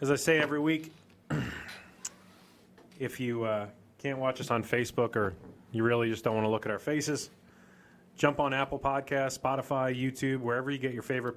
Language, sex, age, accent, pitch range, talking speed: English, male, 30-49, American, 125-160 Hz, 185 wpm